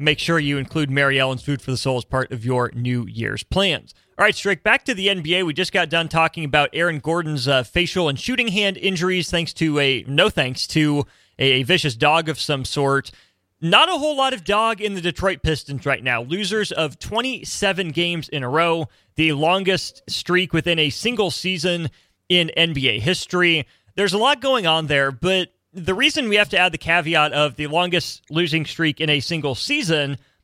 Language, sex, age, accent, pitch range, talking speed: English, male, 30-49, American, 145-180 Hz, 205 wpm